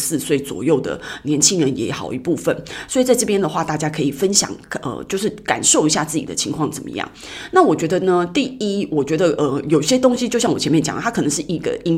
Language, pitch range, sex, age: Chinese, 150-210 Hz, female, 30-49